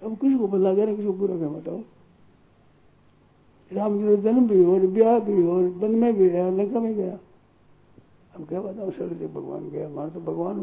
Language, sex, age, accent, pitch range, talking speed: Hindi, male, 60-79, native, 170-205 Hz, 180 wpm